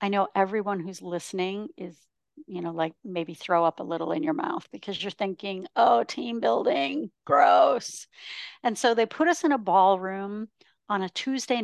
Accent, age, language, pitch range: American, 50-69, English, 180-220 Hz